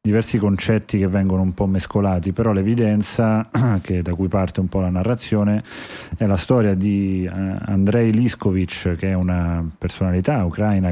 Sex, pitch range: male, 90-100 Hz